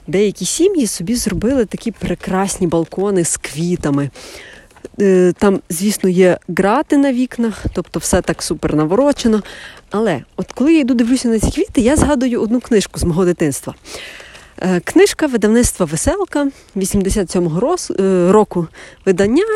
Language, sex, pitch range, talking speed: Ukrainian, female, 180-235 Hz, 130 wpm